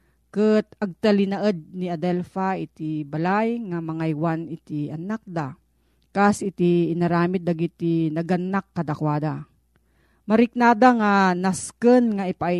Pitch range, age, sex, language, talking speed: 165-220 Hz, 40-59, female, Filipino, 115 wpm